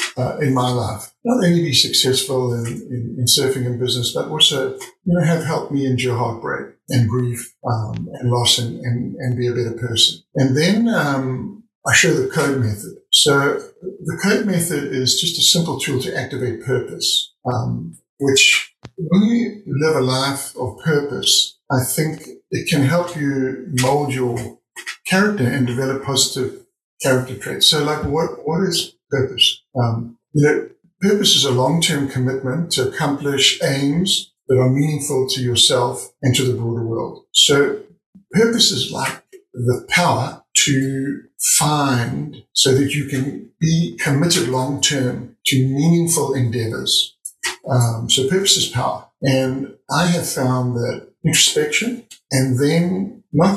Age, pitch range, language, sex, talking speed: 60-79, 125-170 Hz, English, male, 155 wpm